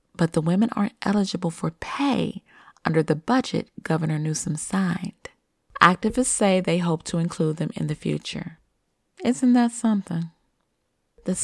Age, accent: 30-49, American